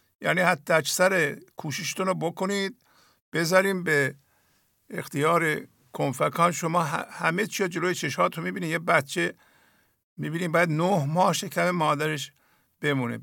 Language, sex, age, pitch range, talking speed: English, male, 50-69, 135-175 Hz, 120 wpm